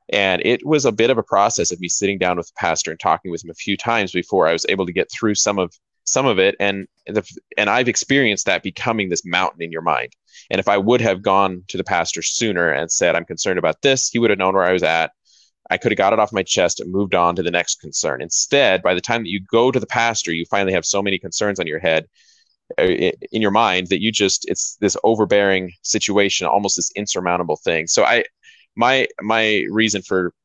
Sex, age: male, 20-39